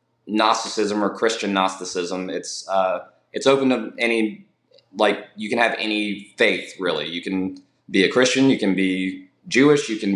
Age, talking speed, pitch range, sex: 20-39, 165 wpm, 100-115 Hz, male